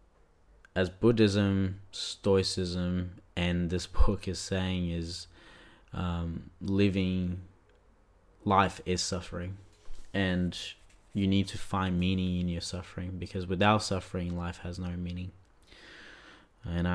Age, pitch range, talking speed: 20-39, 85-95 Hz, 110 wpm